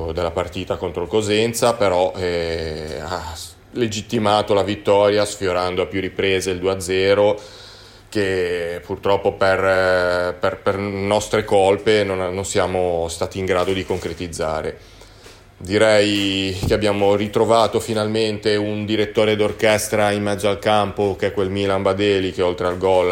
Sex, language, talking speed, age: male, Italian, 140 wpm, 30-49